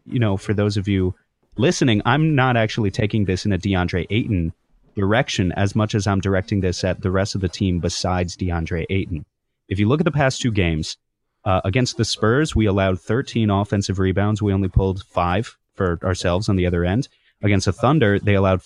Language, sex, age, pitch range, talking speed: English, male, 30-49, 95-110 Hz, 205 wpm